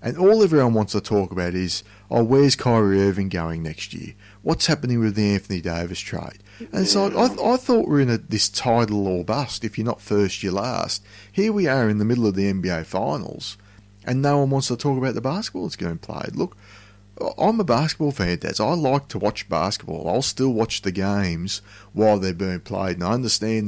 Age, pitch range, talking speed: 30-49, 95-110 Hz, 225 wpm